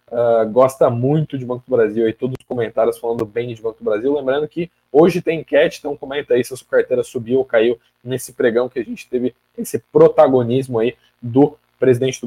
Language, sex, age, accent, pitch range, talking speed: Portuguese, male, 20-39, Brazilian, 115-145 Hz, 210 wpm